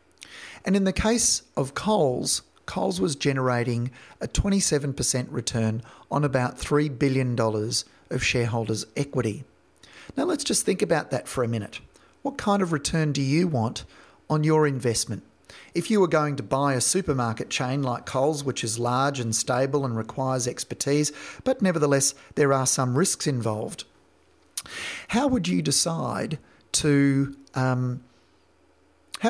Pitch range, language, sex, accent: 120-145 Hz, English, male, Australian